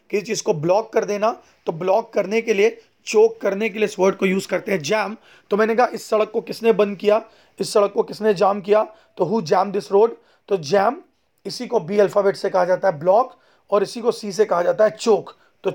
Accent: native